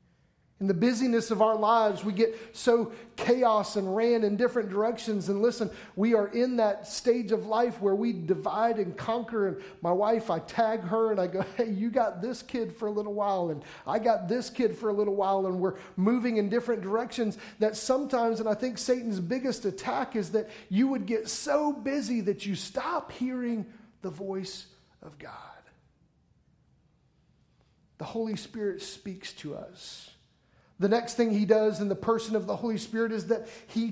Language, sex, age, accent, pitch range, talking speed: English, male, 40-59, American, 195-230 Hz, 190 wpm